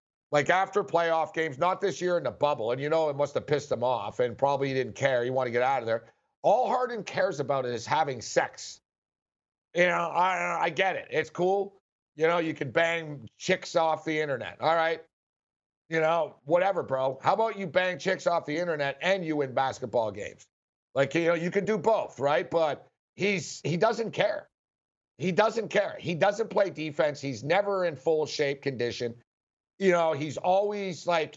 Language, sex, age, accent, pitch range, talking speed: English, male, 60-79, American, 150-195 Hz, 205 wpm